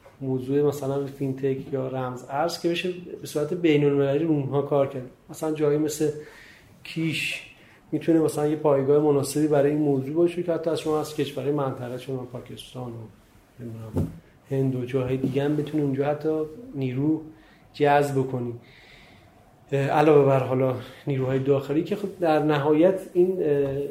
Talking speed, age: 145 wpm, 30-49